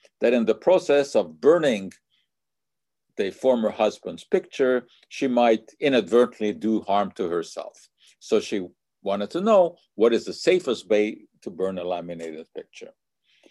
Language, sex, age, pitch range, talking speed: English, male, 50-69, 100-135 Hz, 140 wpm